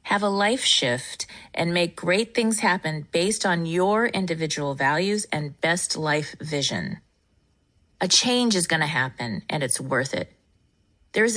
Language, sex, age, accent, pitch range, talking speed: English, female, 30-49, American, 150-195 Hz, 155 wpm